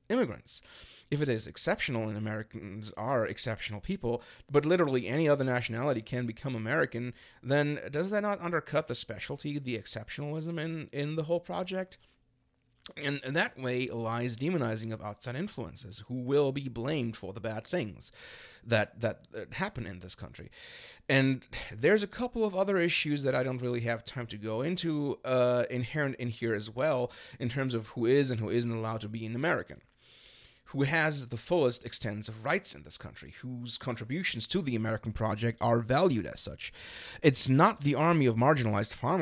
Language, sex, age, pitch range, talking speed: English, male, 30-49, 110-145 Hz, 180 wpm